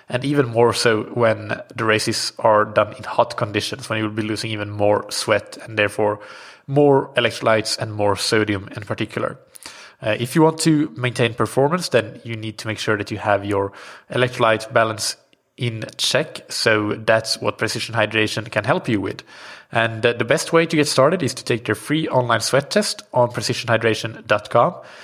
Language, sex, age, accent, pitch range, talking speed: English, male, 20-39, Norwegian, 110-130 Hz, 180 wpm